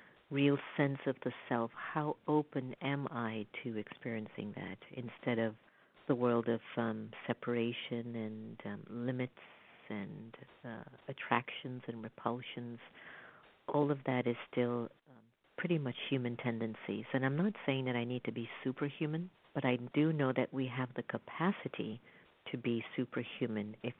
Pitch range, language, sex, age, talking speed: 115-140 Hz, English, female, 50-69, 150 wpm